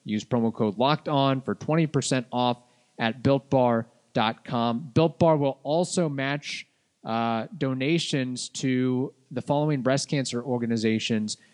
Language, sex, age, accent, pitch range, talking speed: English, male, 20-39, American, 120-155 Hz, 110 wpm